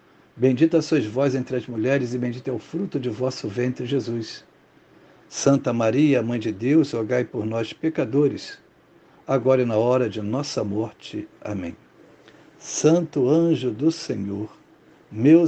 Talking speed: 145 wpm